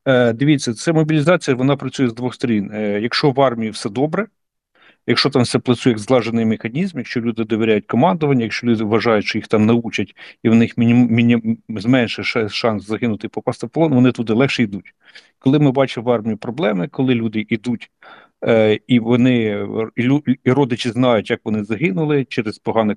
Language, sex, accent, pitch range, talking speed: Ukrainian, male, native, 110-135 Hz, 185 wpm